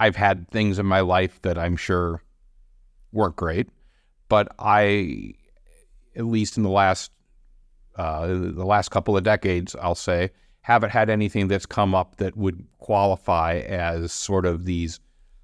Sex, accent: male, American